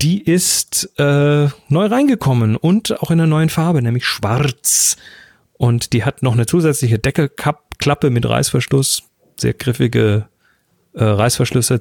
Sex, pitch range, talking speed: male, 115-150 Hz, 130 wpm